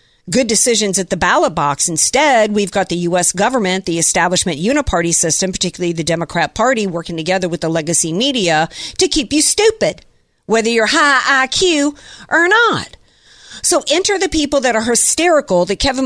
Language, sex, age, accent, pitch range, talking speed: English, female, 50-69, American, 185-275 Hz, 170 wpm